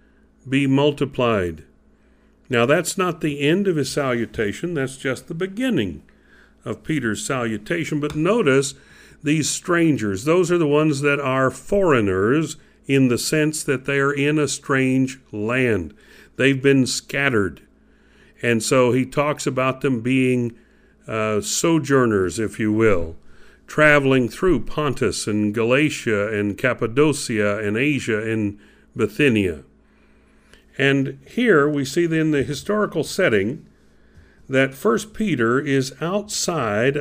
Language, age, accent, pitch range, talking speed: English, 50-69, American, 115-150 Hz, 125 wpm